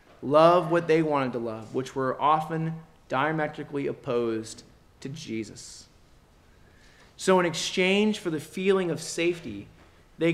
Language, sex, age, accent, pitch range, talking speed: English, male, 30-49, American, 135-175 Hz, 130 wpm